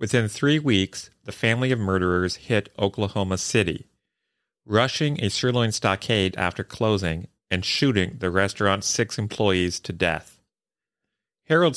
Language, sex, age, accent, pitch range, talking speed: English, male, 40-59, American, 95-115 Hz, 125 wpm